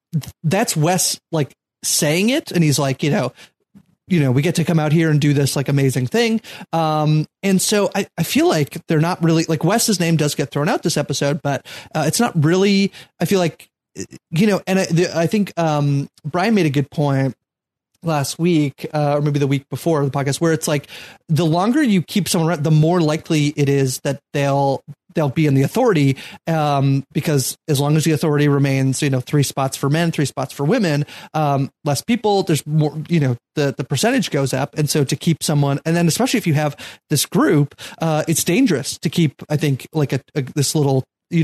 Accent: American